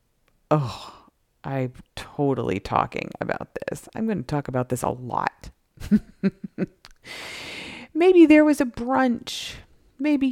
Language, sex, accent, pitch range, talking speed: English, female, American, 135-180 Hz, 115 wpm